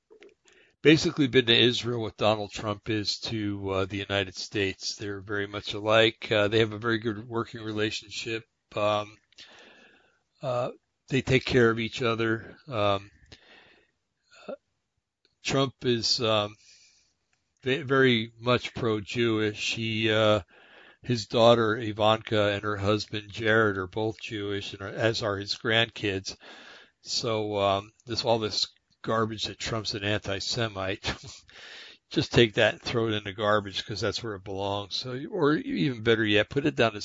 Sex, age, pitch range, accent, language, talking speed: male, 60-79, 105-115 Hz, American, English, 145 wpm